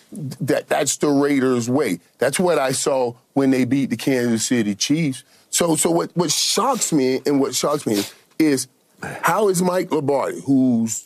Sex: male